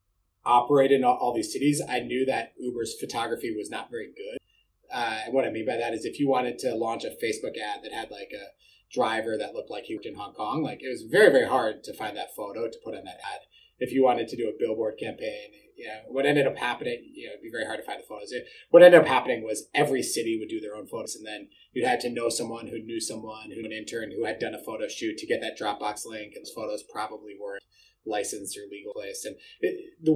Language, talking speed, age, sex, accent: English, 265 wpm, 30-49, male, American